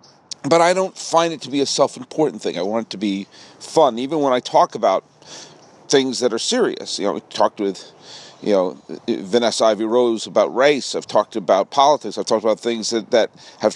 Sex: male